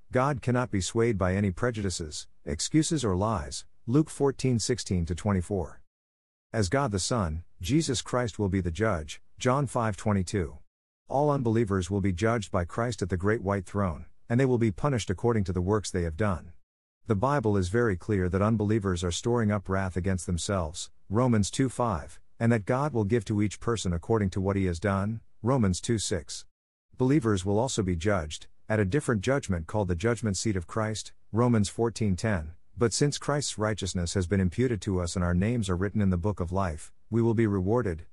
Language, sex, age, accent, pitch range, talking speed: English, male, 50-69, American, 90-115 Hz, 190 wpm